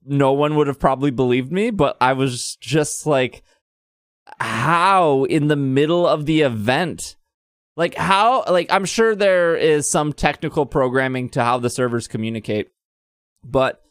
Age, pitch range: 20-39, 120-175 Hz